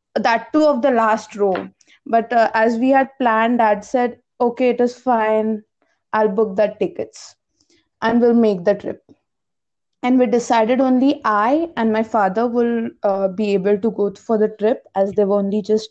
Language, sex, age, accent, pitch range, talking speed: English, female, 20-39, Indian, 215-265 Hz, 185 wpm